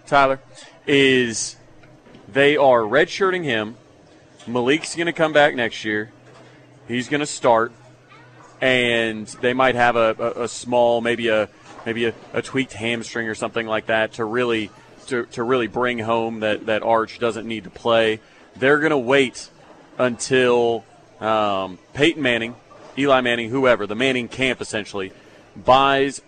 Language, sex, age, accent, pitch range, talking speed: English, male, 30-49, American, 115-145 Hz, 145 wpm